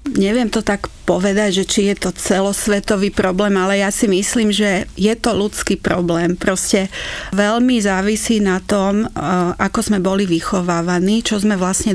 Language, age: Slovak, 40-59